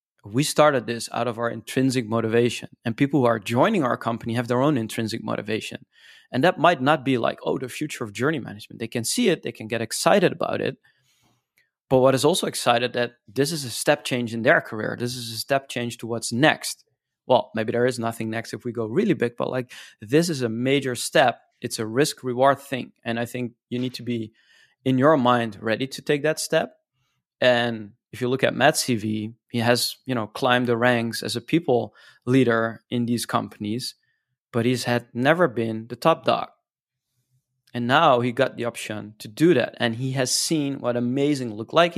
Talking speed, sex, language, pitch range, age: 210 wpm, male, English, 115-135 Hz, 20-39